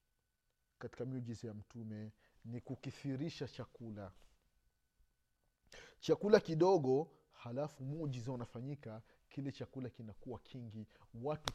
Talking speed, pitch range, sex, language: 90 wpm, 105-150 Hz, male, Swahili